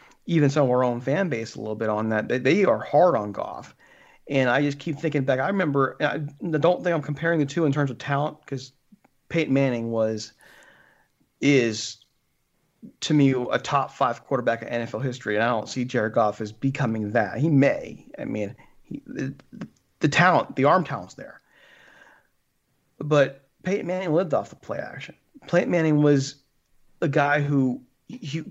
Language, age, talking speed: English, 40-59, 185 wpm